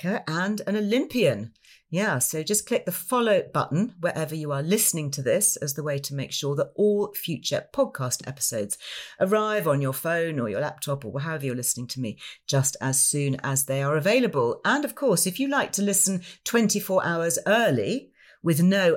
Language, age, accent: English, 40-59, British